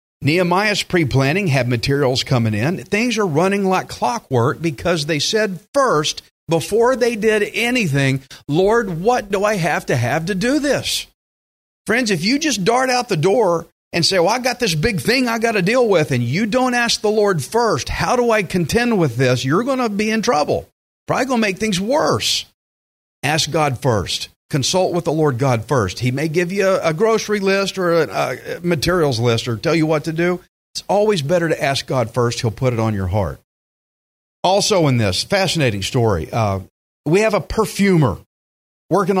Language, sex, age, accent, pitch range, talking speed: English, male, 50-69, American, 130-205 Hz, 195 wpm